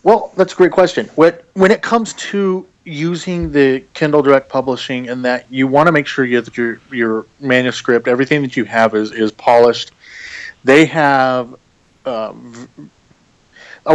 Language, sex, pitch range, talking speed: English, male, 120-150 Hz, 155 wpm